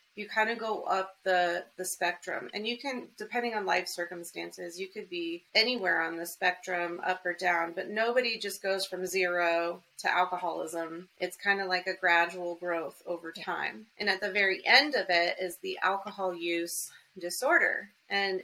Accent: American